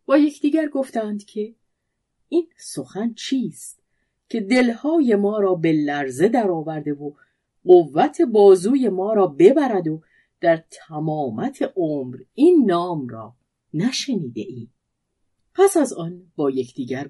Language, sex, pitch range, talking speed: Persian, female, 150-245 Hz, 125 wpm